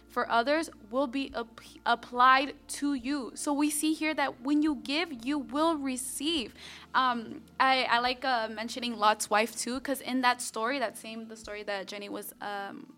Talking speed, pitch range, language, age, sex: 180 wpm, 235-280 Hz, English, 20-39, female